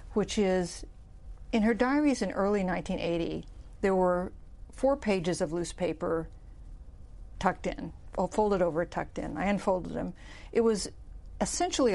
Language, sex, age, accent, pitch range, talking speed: English, female, 50-69, American, 175-220 Hz, 135 wpm